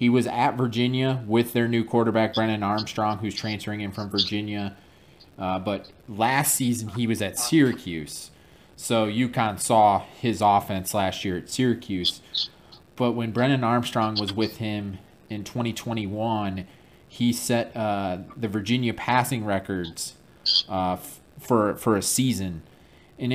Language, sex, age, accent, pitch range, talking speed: English, male, 30-49, American, 95-120 Hz, 140 wpm